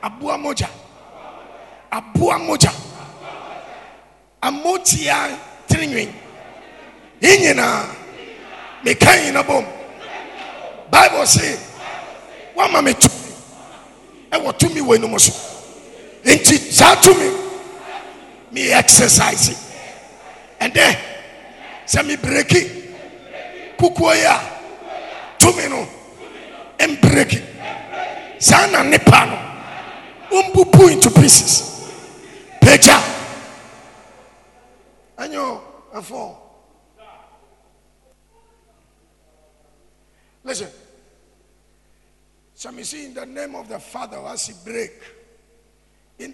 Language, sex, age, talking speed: English, male, 50-69, 75 wpm